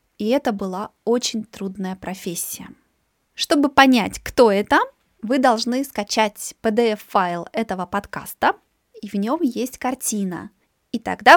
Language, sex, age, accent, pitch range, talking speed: Russian, female, 20-39, native, 205-260 Hz, 120 wpm